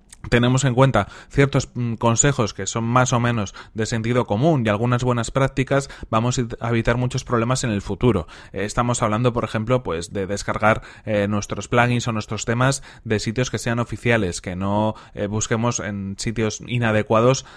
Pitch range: 105-125 Hz